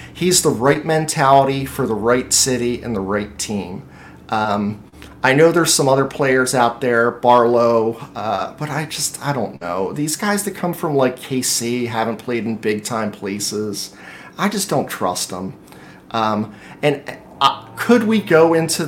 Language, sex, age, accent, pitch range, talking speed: English, male, 40-59, American, 110-150 Hz, 170 wpm